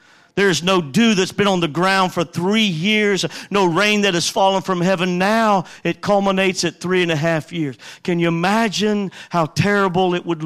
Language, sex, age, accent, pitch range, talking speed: English, male, 50-69, American, 180-250 Hz, 195 wpm